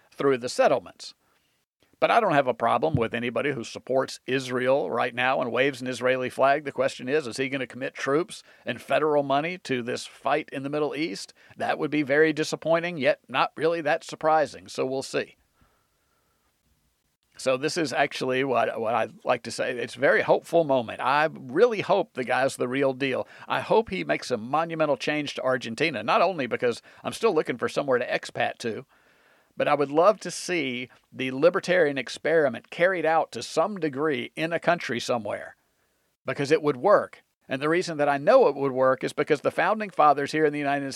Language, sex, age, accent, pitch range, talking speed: English, male, 50-69, American, 130-155 Hz, 200 wpm